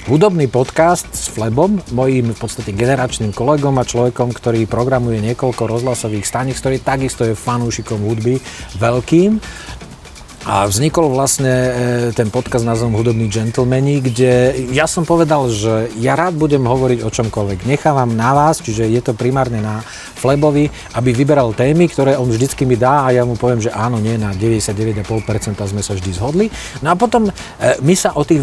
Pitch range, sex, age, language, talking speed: 115-140 Hz, male, 40-59, Slovak, 165 wpm